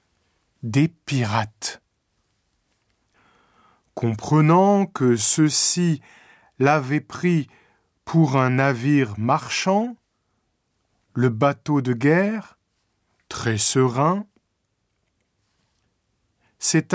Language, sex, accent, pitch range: Japanese, male, French, 110-170 Hz